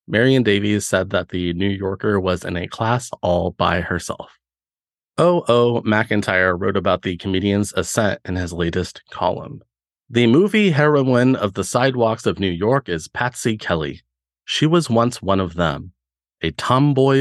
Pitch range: 85-120 Hz